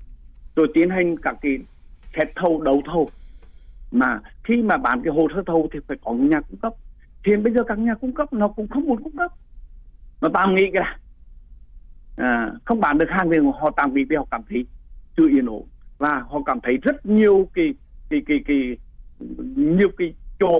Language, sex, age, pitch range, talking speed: Vietnamese, male, 60-79, 130-205 Hz, 200 wpm